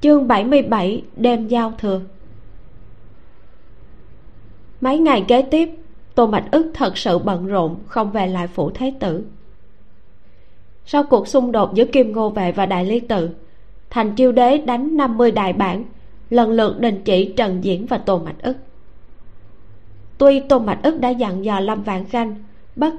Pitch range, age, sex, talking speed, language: 185-250 Hz, 20-39, female, 160 wpm, Vietnamese